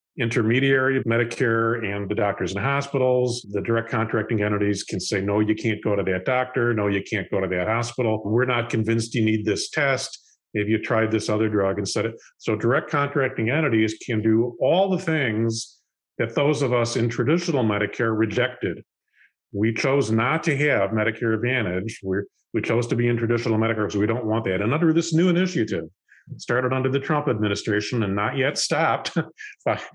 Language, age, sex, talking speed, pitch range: English, 50-69, male, 195 wpm, 105-135 Hz